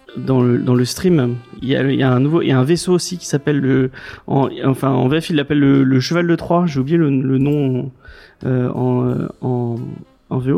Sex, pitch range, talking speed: male, 130-170 Hz, 245 wpm